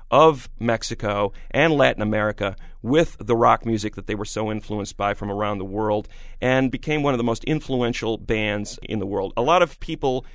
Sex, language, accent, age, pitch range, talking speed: male, English, American, 40-59, 105-145 Hz, 195 wpm